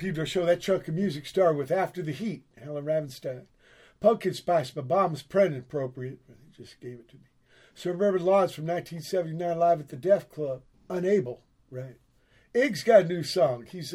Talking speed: 190 wpm